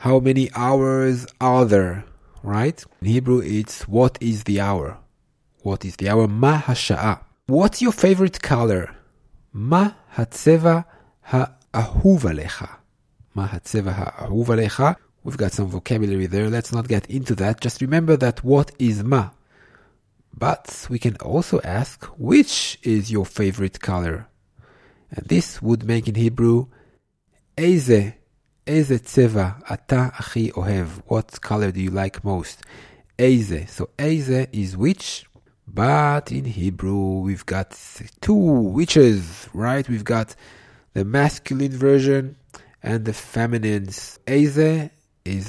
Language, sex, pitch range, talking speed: English, male, 100-135 Hz, 125 wpm